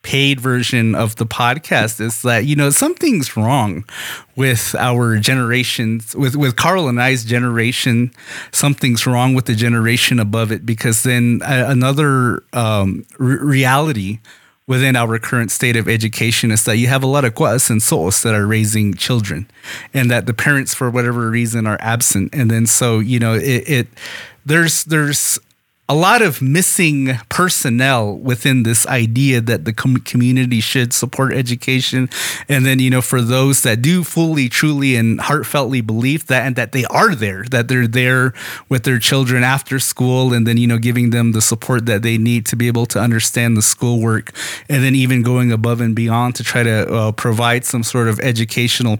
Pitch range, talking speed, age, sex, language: 115-130 Hz, 180 wpm, 30-49, male, English